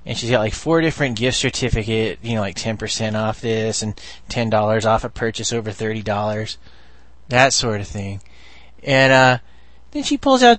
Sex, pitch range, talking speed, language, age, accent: male, 110-145 Hz, 175 wpm, English, 30-49, American